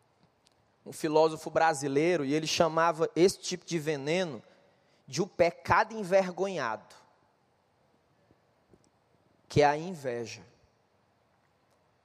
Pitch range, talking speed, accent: 180-270 Hz, 90 wpm, Brazilian